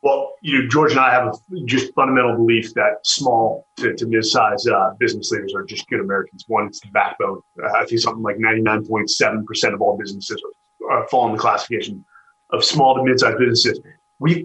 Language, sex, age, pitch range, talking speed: English, male, 30-49, 120-165 Hz, 200 wpm